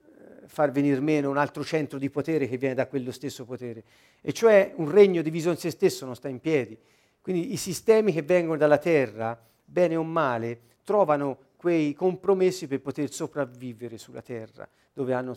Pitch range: 130-185 Hz